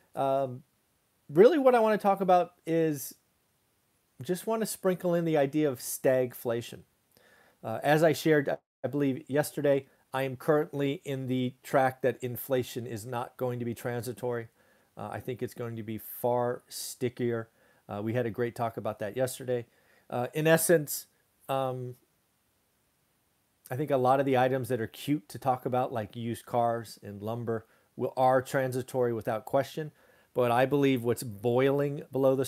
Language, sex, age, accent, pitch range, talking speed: English, male, 40-59, American, 120-145 Hz, 170 wpm